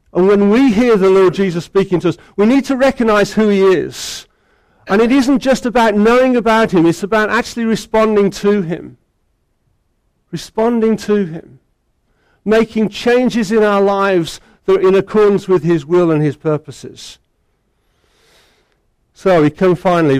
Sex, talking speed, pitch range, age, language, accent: male, 155 wpm, 140-205 Hz, 50-69, English, British